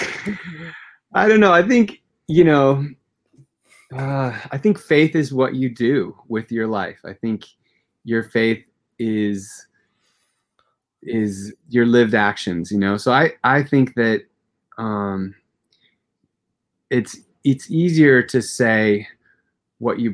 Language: English